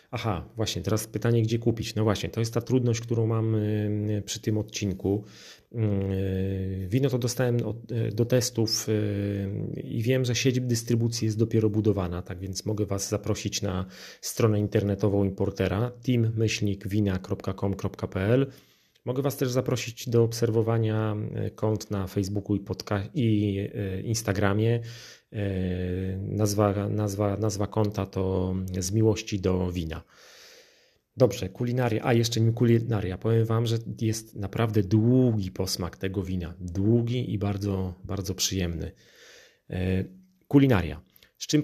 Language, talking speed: Polish, 135 wpm